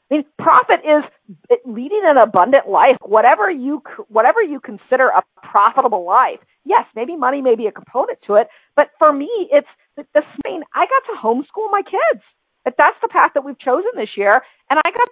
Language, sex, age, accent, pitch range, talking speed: English, female, 40-59, American, 230-310 Hz, 190 wpm